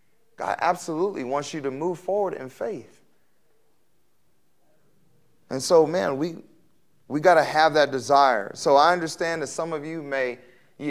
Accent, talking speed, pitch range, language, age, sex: American, 155 wpm, 135-165 Hz, English, 30-49, male